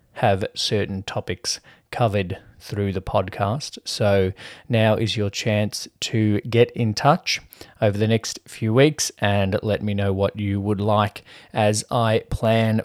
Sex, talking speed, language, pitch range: male, 150 wpm, English, 100-120 Hz